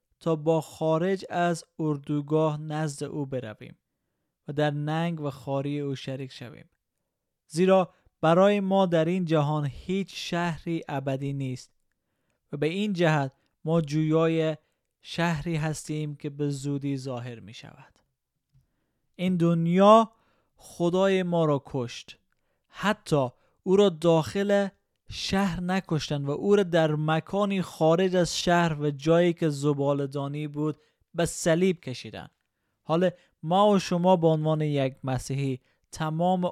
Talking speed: 125 wpm